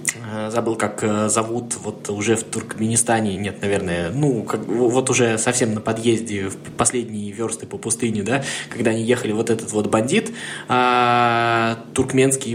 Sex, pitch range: male, 110-135 Hz